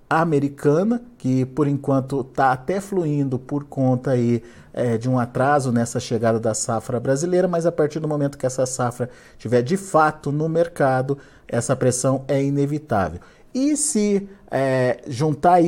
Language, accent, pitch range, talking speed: Portuguese, Brazilian, 120-150 Hz, 155 wpm